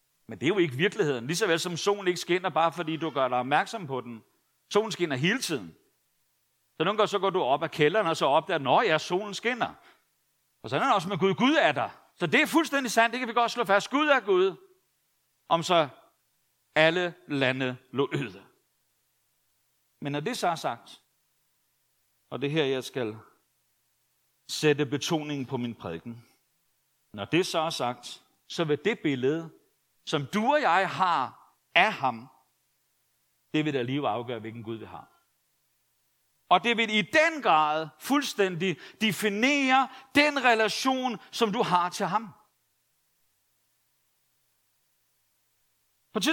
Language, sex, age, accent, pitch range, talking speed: Danish, male, 60-79, native, 150-240 Hz, 170 wpm